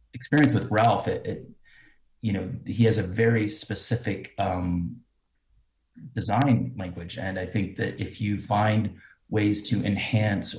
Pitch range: 95-115 Hz